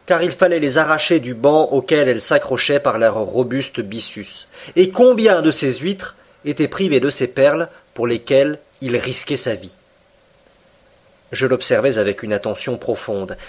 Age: 30-49